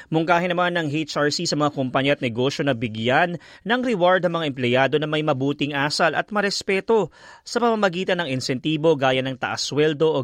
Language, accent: Filipino, native